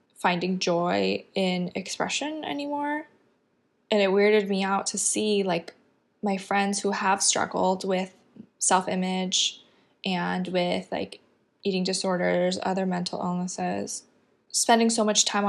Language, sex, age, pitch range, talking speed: English, female, 10-29, 180-205 Hz, 125 wpm